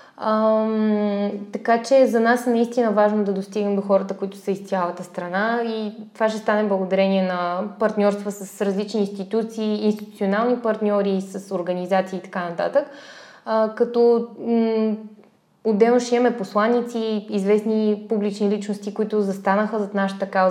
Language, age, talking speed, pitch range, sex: Bulgarian, 20-39, 145 wpm, 195-230 Hz, female